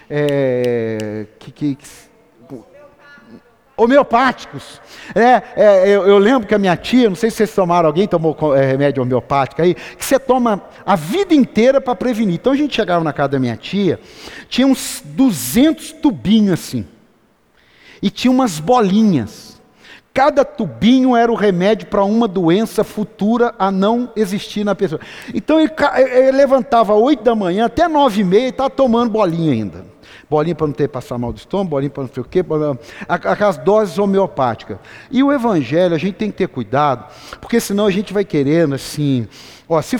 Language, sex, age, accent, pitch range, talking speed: Portuguese, male, 50-69, Brazilian, 150-240 Hz, 180 wpm